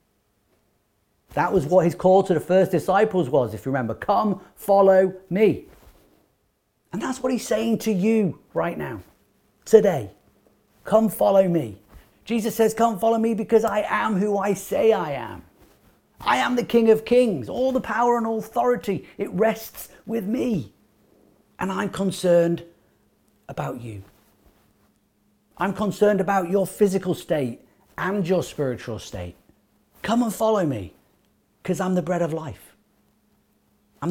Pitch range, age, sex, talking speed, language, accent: 130-200 Hz, 40-59, male, 145 wpm, English, British